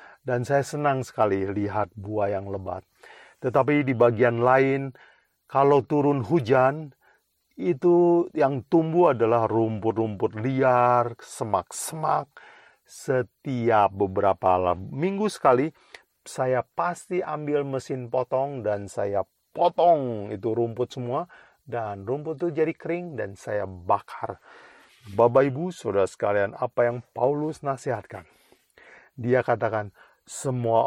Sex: male